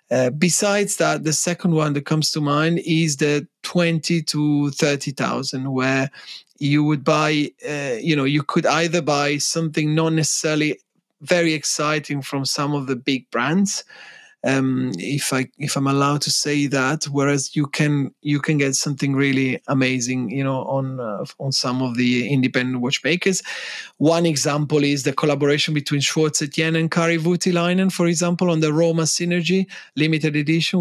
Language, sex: English, male